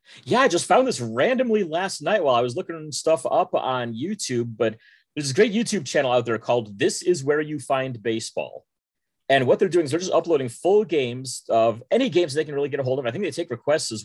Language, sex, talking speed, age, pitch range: English, male, 250 wpm, 30-49, 115-155 Hz